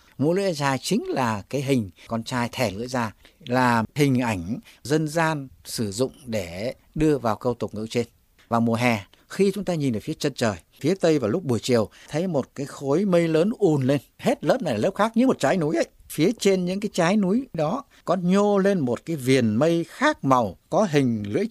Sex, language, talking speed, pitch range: male, Vietnamese, 225 wpm, 120-175 Hz